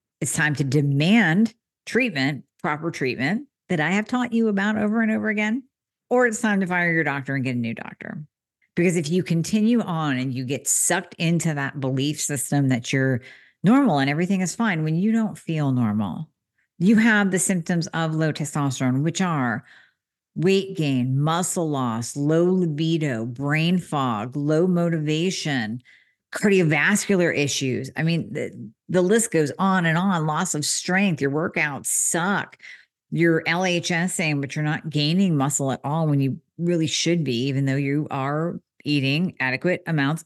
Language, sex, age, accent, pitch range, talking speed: English, female, 50-69, American, 140-185 Hz, 165 wpm